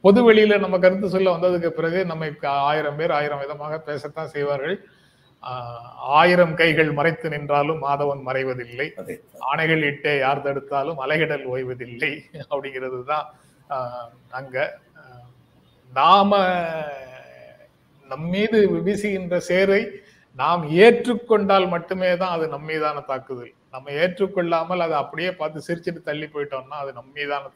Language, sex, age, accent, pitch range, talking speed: Tamil, male, 30-49, native, 135-180 Hz, 110 wpm